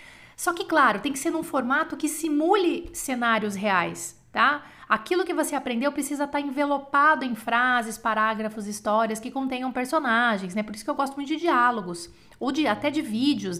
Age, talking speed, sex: 30-49, 175 wpm, female